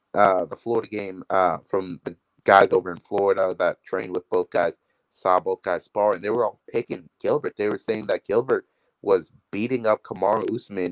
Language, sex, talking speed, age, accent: English, male, 200 wpm, 30-49, American